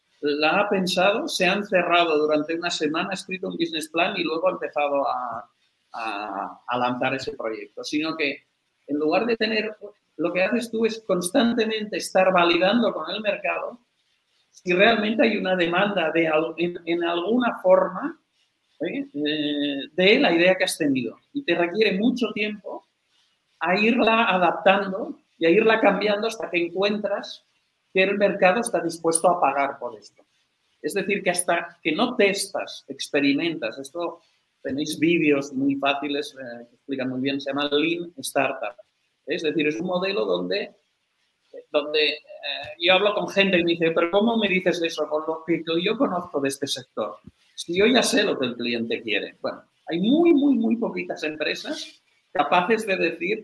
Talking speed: 170 wpm